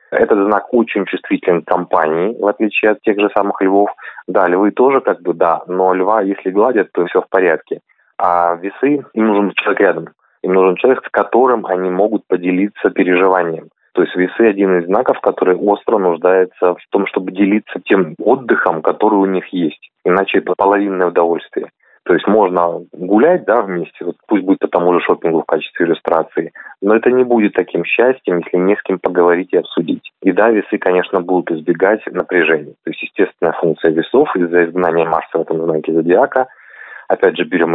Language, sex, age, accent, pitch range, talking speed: Russian, male, 30-49, native, 90-100 Hz, 185 wpm